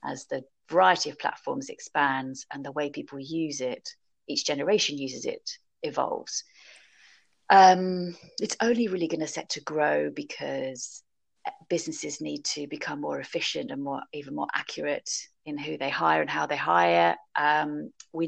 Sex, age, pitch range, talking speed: female, 30-49, 145-185 Hz, 155 wpm